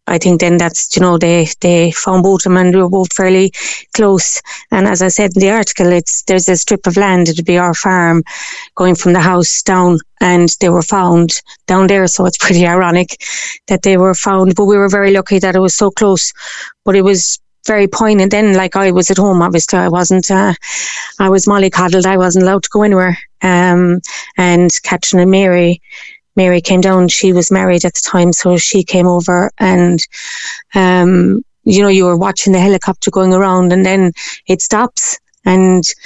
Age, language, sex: 30-49, English, female